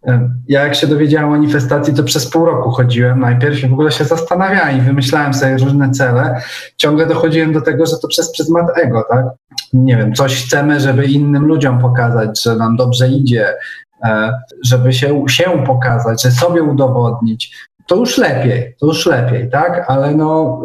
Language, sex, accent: Polish, male, native